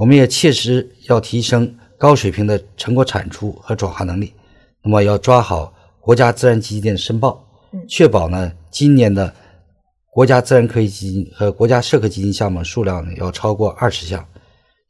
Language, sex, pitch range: Chinese, male, 95-120 Hz